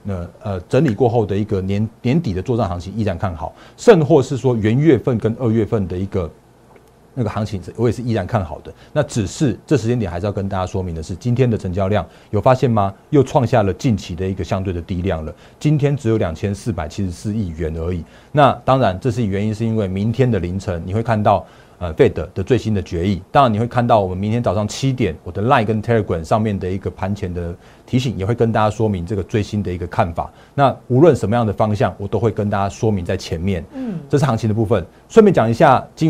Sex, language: male, Chinese